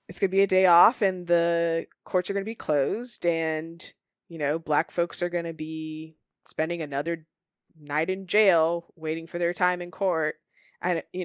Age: 20-39